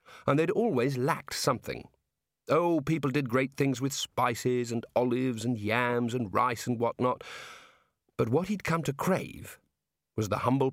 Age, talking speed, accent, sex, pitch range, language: 40-59, 160 wpm, British, male, 120-155 Hz, English